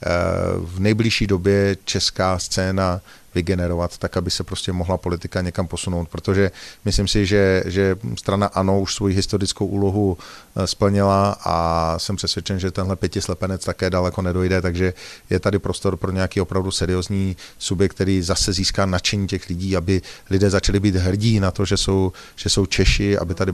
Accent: native